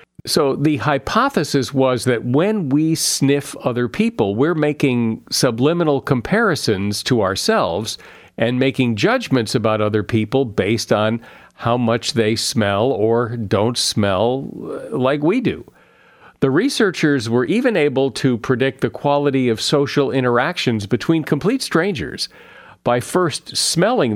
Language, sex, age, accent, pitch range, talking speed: English, male, 50-69, American, 115-145 Hz, 130 wpm